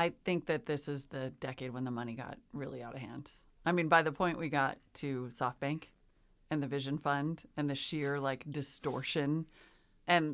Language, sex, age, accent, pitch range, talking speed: English, female, 30-49, American, 130-160 Hz, 195 wpm